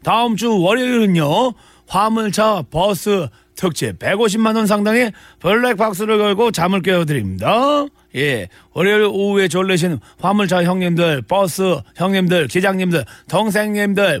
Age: 40-59